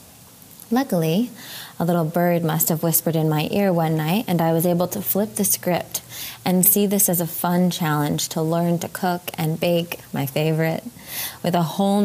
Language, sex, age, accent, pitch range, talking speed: English, female, 20-39, American, 160-180 Hz, 190 wpm